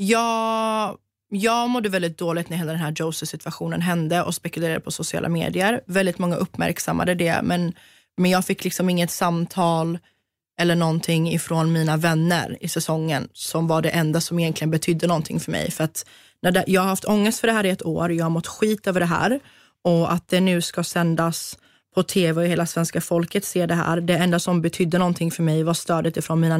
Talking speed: 210 wpm